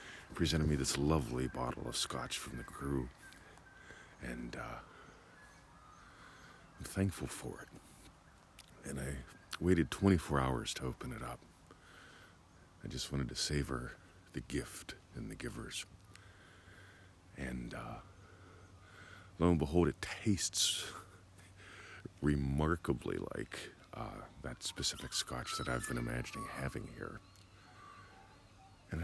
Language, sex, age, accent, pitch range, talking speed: English, male, 50-69, American, 70-95 Hz, 115 wpm